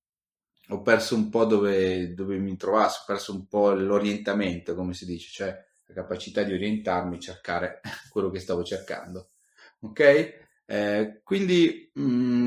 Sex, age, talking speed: male, 30-49, 140 wpm